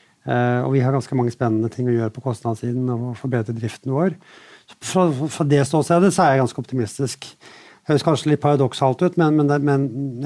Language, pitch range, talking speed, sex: English, 125-145 Hz, 210 wpm, male